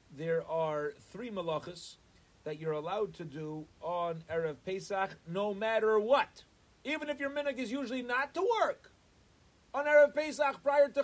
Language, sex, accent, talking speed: English, male, American, 160 wpm